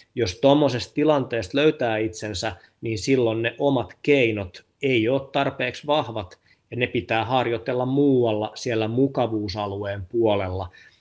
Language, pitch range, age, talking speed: Finnish, 100-130 Hz, 30-49, 120 wpm